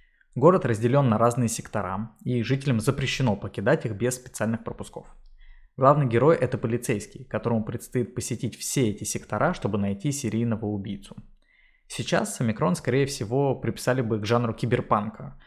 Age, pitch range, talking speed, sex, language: 20-39, 110-135 Hz, 140 wpm, male, Russian